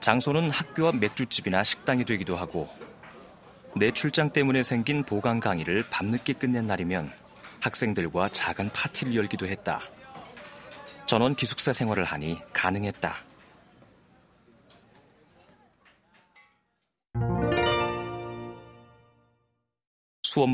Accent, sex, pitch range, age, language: native, male, 95-130 Hz, 30-49, Korean